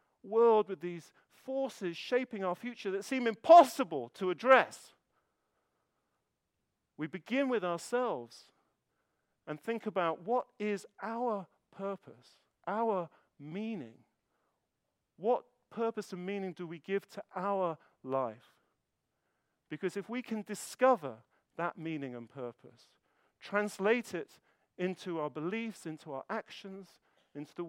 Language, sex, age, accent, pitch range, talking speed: English, male, 50-69, British, 130-200 Hz, 115 wpm